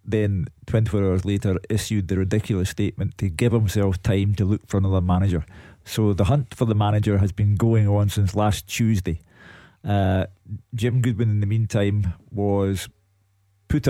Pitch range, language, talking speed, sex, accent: 100-115 Hz, English, 165 wpm, male, British